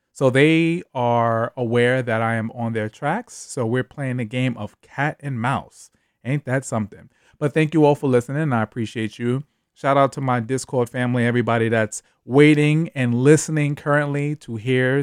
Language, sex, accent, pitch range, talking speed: English, male, American, 120-155 Hz, 180 wpm